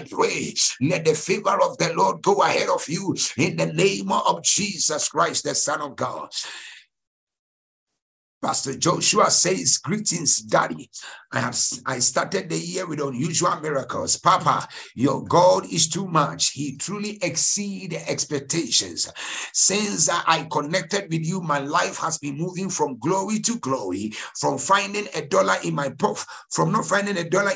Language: English